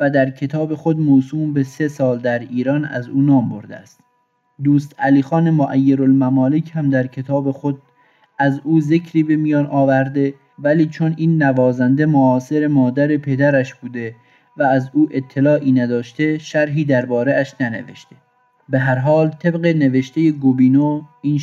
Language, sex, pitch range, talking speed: Persian, male, 130-150 Hz, 145 wpm